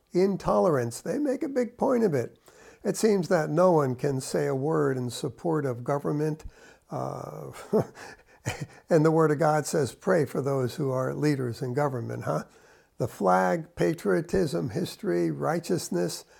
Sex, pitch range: male, 135-175 Hz